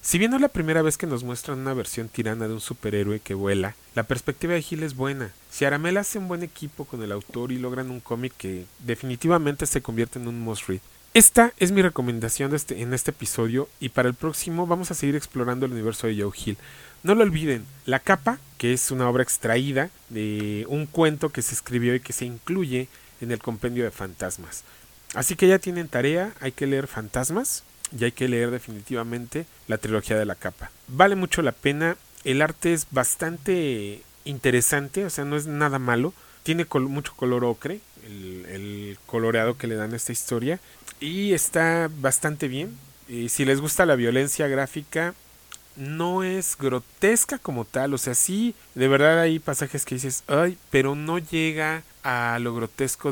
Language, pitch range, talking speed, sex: English, 120-160 Hz, 195 wpm, male